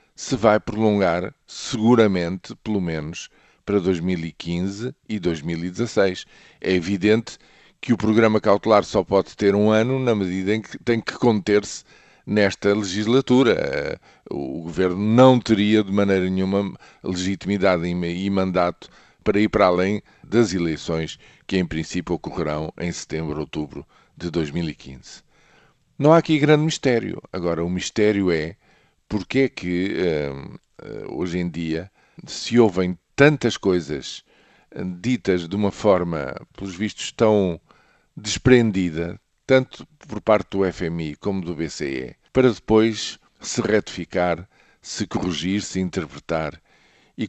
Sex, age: male, 50-69